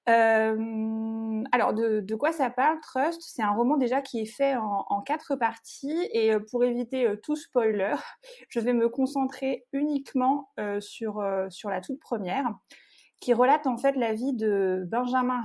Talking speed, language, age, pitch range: 165 wpm, French, 30-49, 210-260 Hz